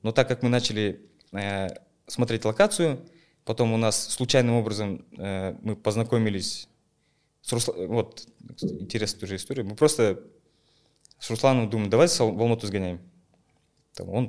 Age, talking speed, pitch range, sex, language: 20-39, 130 wpm, 100-125 Hz, male, Russian